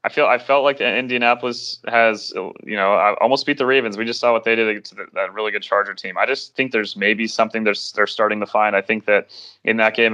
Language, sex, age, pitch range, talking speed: English, male, 20-39, 105-120 Hz, 255 wpm